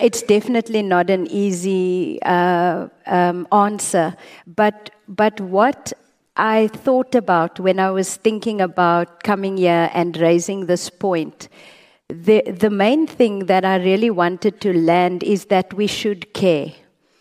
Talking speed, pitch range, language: 140 wpm, 185-220 Hz, English